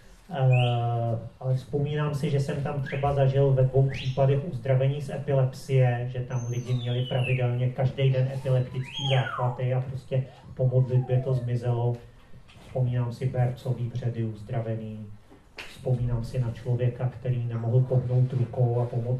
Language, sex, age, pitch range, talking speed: Czech, male, 40-59, 125-135 Hz, 140 wpm